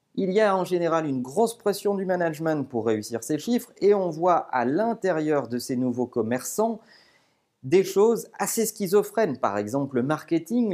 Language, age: French, 40-59